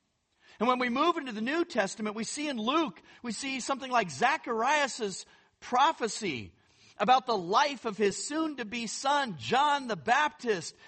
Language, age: English, 50-69